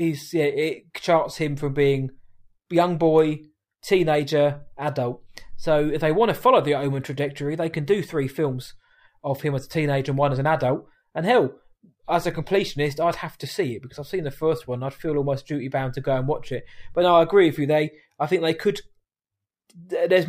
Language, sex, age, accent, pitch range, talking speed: English, male, 20-39, British, 135-170 Hz, 215 wpm